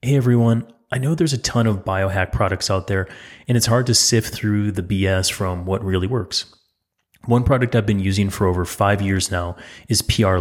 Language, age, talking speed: English, 30-49, 210 wpm